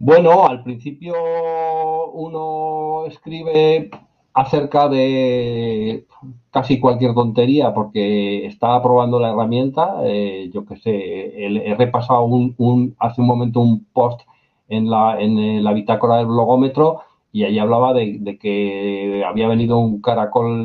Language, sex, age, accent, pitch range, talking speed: Spanish, male, 40-59, Spanish, 110-135 Hz, 130 wpm